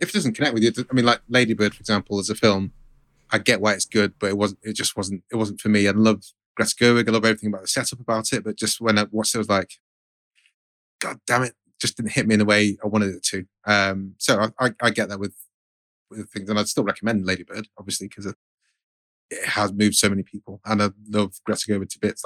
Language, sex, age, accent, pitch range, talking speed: English, male, 30-49, British, 100-110 Hz, 260 wpm